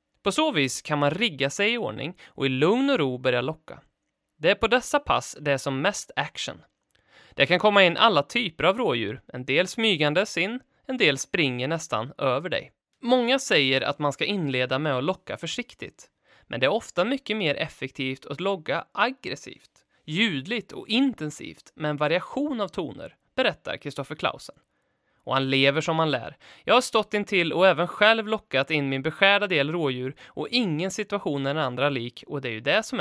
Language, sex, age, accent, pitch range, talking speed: Swedish, male, 20-39, native, 140-215 Hz, 195 wpm